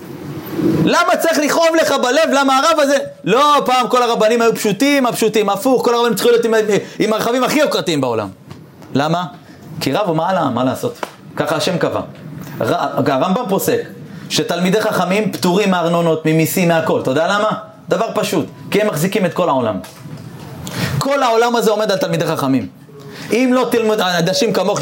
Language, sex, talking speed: Hebrew, male, 160 wpm